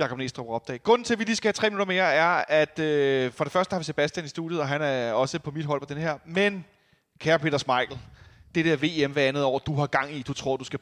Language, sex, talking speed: Danish, male, 285 wpm